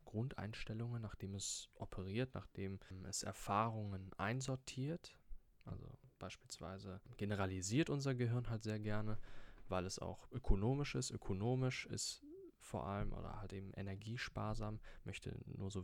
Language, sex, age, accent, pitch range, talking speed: German, male, 20-39, German, 95-125 Hz, 120 wpm